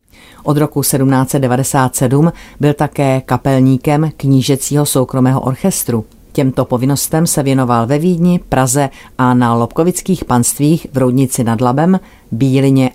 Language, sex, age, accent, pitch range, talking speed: Czech, female, 40-59, native, 125-150 Hz, 115 wpm